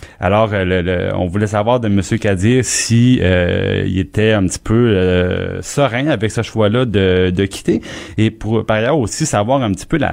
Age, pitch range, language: 30-49, 90-110 Hz, French